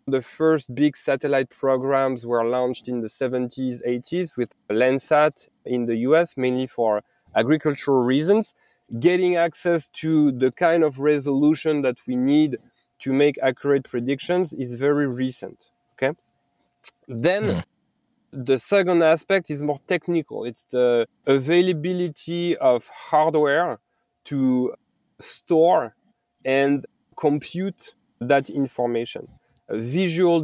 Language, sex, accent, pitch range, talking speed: English, male, French, 130-160 Hz, 110 wpm